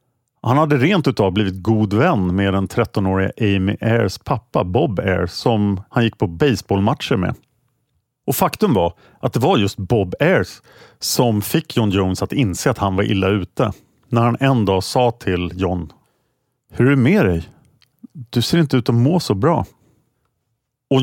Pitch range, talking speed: 105-130 Hz, 175 wpm